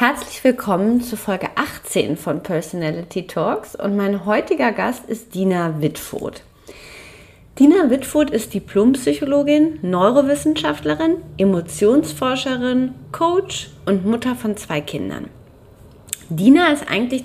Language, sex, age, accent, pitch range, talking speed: German, female, 30-49, German, 180-250 Hz, 105 wpm